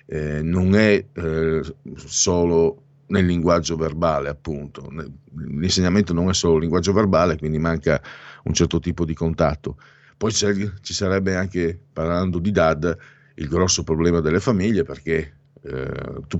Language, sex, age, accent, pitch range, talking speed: Italian, male, 50-69, native, 80-95 Hz, 140 wpm